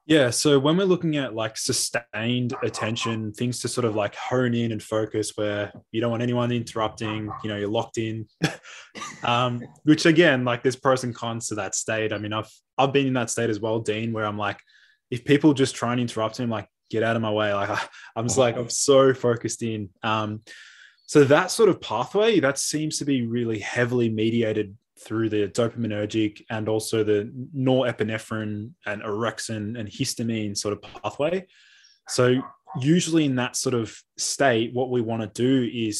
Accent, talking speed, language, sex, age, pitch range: Australian, 195 wpm, English, male, 20-39, 110-125 Hz